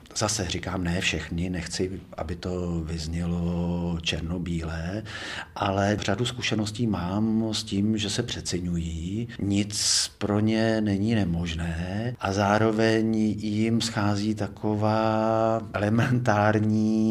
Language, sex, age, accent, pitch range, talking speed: Czech, male, 40-59, native, 90-110 Hz, 100 wpm